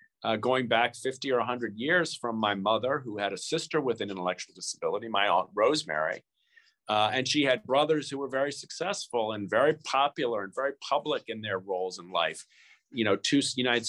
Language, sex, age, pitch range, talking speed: English, male, 50-69, 115-165 Hz, 195 wpm